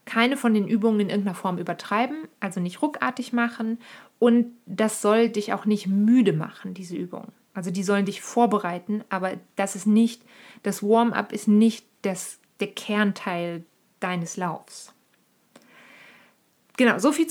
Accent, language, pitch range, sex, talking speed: German, German, 195-230 Hz, female, 140 wpm